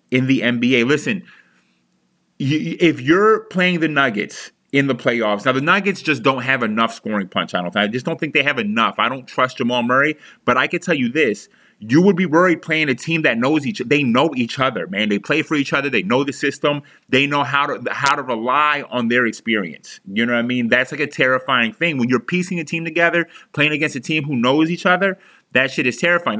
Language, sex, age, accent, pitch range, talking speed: English, male, 30-49, American, 130-170 Hz, 235 wpm